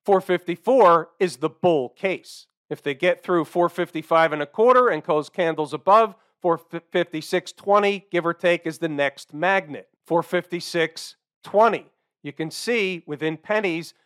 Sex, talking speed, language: male, 130 wpm, English